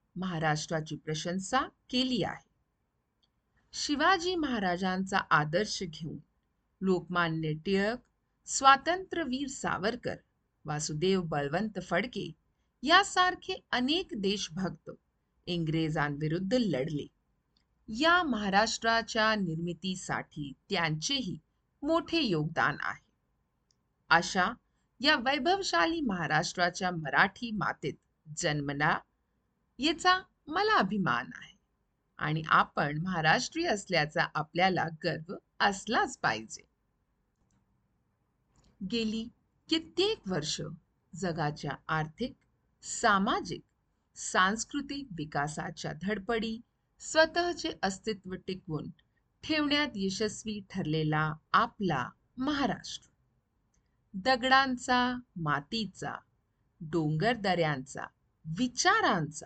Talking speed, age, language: 40 wpm, 50-69, Hindi